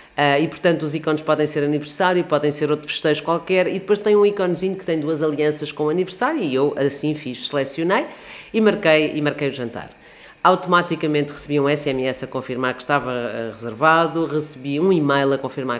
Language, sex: Portuguese, female